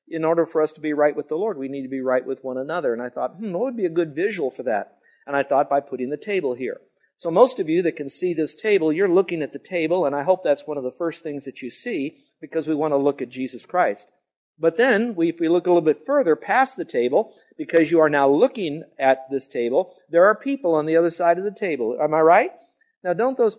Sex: male